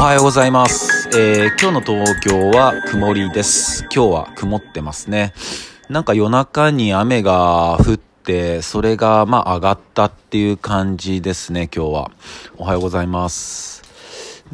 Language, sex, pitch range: Japanese, male, 85-110 Hz